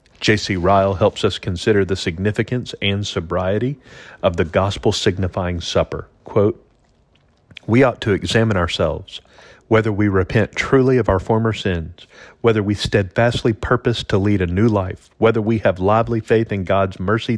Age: 40-59